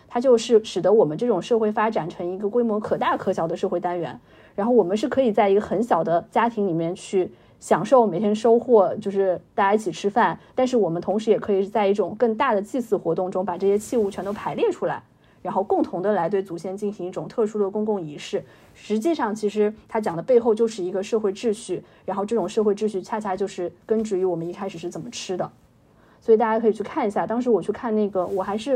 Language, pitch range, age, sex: Chinese, 185-225 Hz, 30-49, female